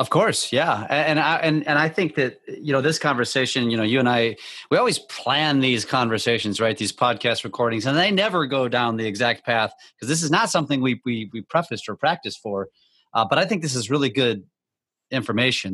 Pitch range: 110-140 Hz